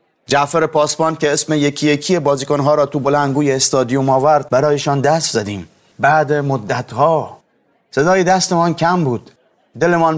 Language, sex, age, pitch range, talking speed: Persian, male, 30-49, 125-155 Hz, 140 wpm